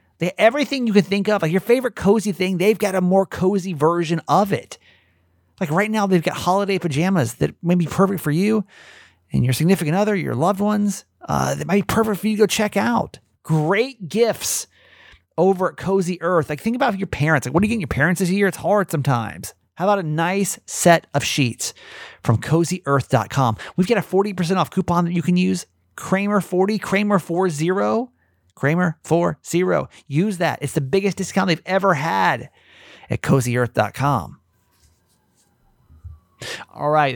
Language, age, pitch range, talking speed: English, 30-49, 130-195 Hz, 180 wpm